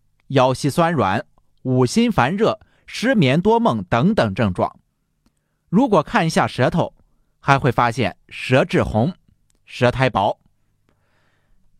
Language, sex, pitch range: Chinese, male, 110-180 Hz